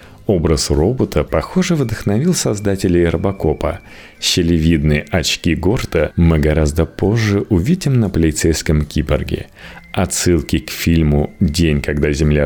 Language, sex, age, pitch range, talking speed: Russian, male, 30-49, 75-100 Hz, 105 wpm